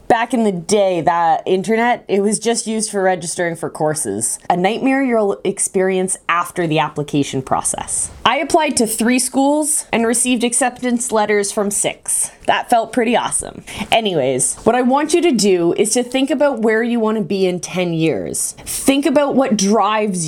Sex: female